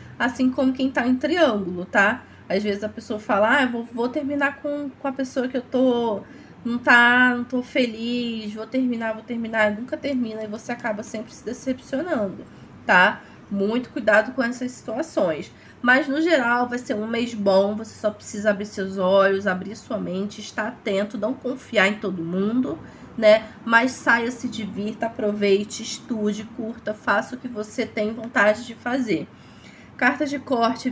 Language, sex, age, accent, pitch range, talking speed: Portuguese, female, 20-39, Brazilian, 205-250 Hz, 175 wpm